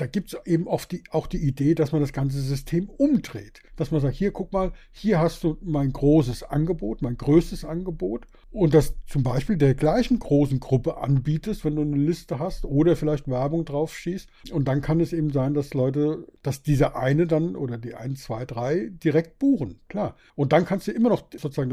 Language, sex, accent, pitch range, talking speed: German, male, German, 135-165 Hz, 205 wpm